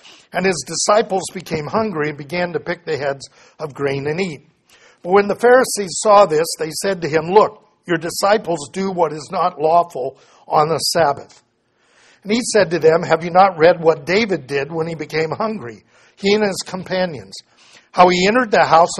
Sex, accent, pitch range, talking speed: male, American, 150-195 Hz, 195 wpm